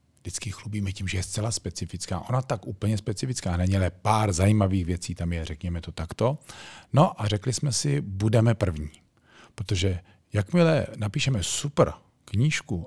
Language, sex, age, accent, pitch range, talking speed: Czech, male, 40-59, native, 95-120 Hz, 155 wpm